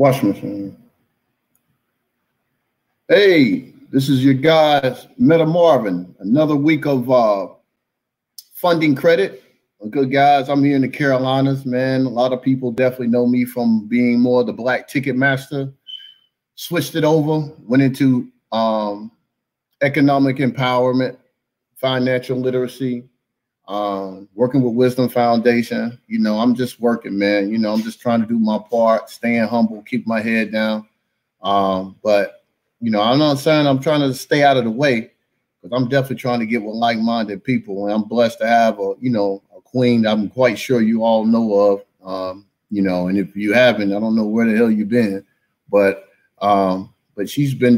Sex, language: male, English